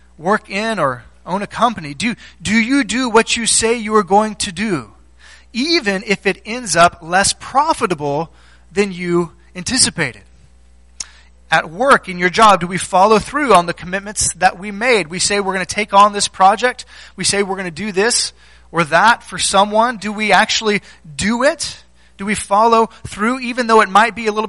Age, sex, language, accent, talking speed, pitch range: 20-39, male, English, American, 195 wpm, 170-225 Hz